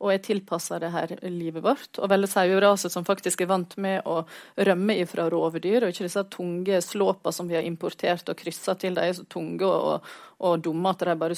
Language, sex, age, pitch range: English, female, 30-49, 170-205 Hz